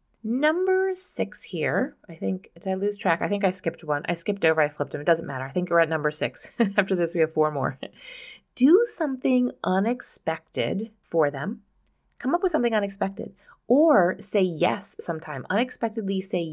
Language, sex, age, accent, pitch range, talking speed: English, female, 30-49, American, 165-235 Hz, 185 wpm